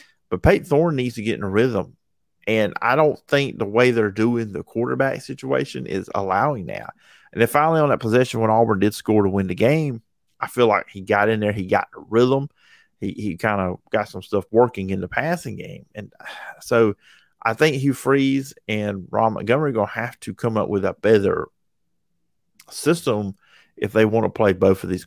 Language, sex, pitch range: English, male, 100-125 Hz